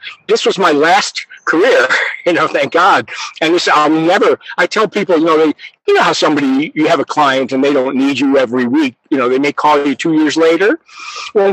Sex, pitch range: male, 160-255 Hz